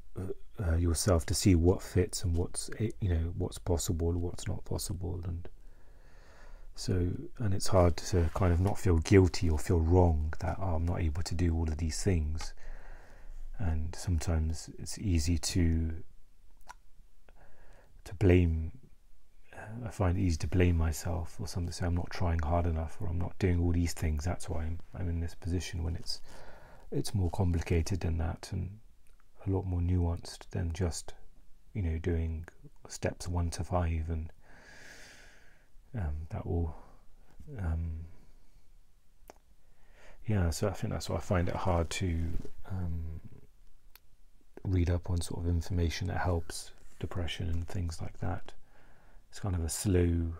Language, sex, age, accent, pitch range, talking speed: English, male, 40-59, British, 85-95 Hz, 160 wpm